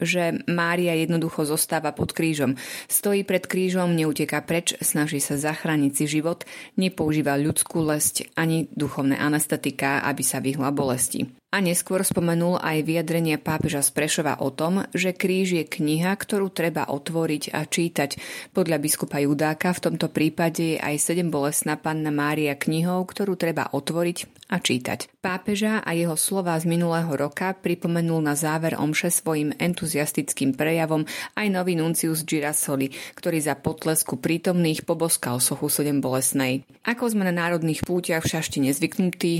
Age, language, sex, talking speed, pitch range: 30-49, Slovak, female, 145 wpm, 150-175 Hz